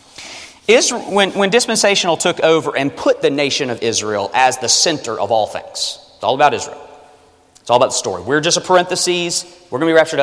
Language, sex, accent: English, male, American